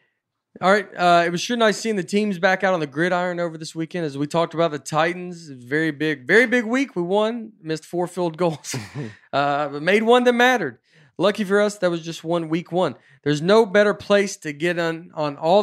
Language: English